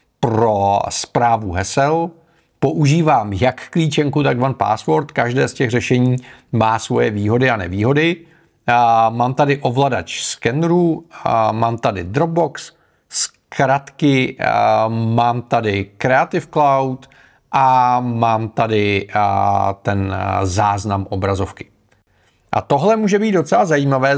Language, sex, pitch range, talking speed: Czech, male, 110-140 Hz, 110 wpm